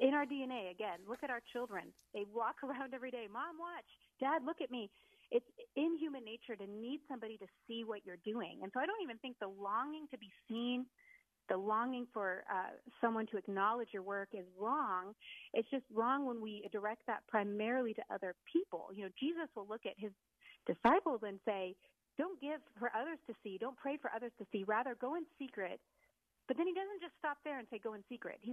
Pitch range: 210-275 Hz